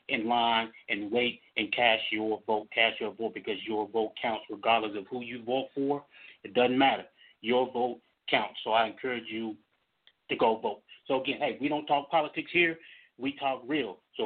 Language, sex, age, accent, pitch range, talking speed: English, male, 30-49, American, 115-135 Hz, 195 wpm